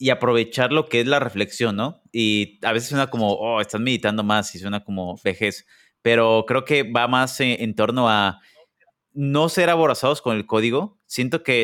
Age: 30-49